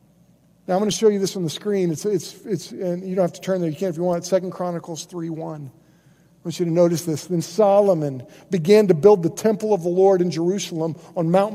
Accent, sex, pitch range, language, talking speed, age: American, male, 165-220 Hz, English, 255 wpm, 50-69